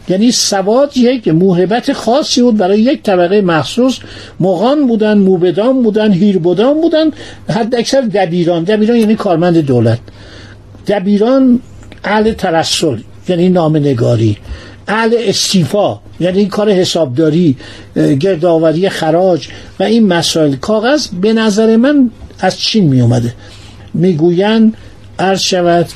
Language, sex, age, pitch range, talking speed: Persian, male, 60-79, 155-215 Hz, 110 wpm